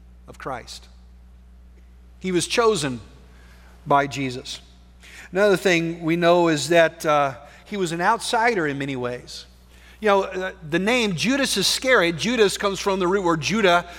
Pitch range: 155-210 Hz